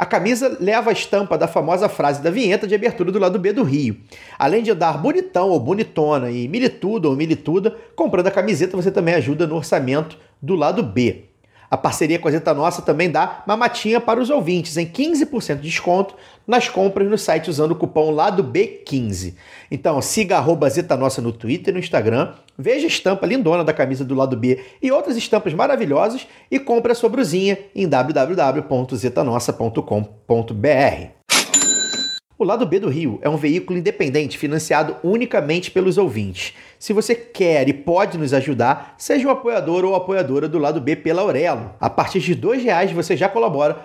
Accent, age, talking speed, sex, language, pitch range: Brazilian, 40-59, 180 wpm, male, Portuguese, 150-210 Hz